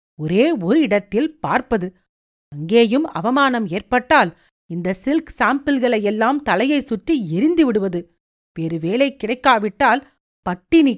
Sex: female